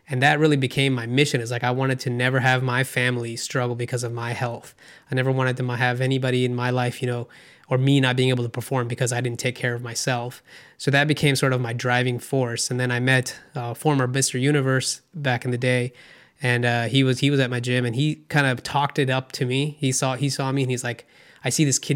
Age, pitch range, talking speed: 20-39, 125-140 Hz, 260 wpm